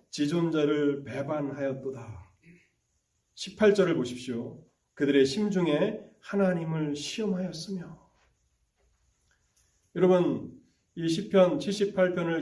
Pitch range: 140-195 Hz